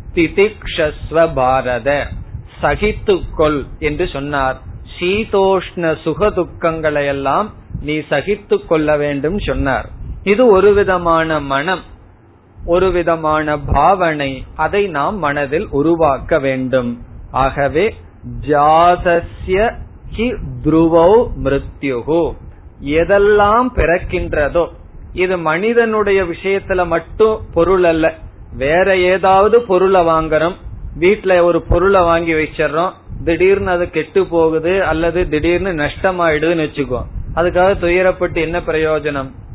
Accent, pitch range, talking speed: native, 145-180 Hz, 75 wpm